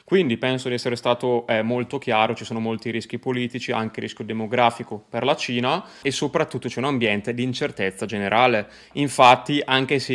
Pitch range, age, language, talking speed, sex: 120-140 Hz, 20-39, Italian, 175 wpm, male